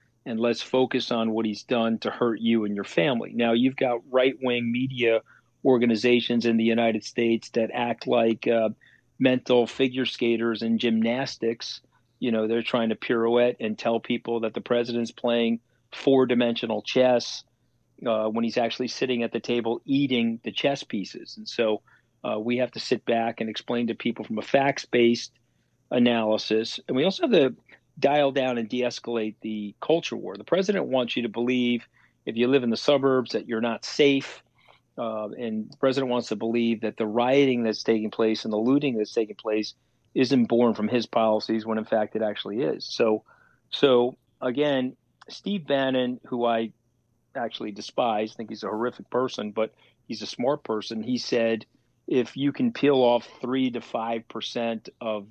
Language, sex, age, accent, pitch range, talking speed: English, male, 40-59, American, 115-125 Hz, 180 wpm